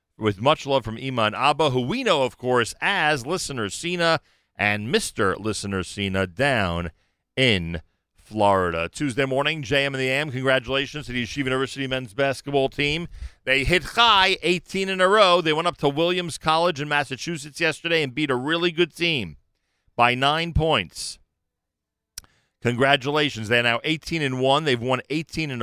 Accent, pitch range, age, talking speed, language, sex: American, 95-140 Hz, 40-59, 165 wpm, English, male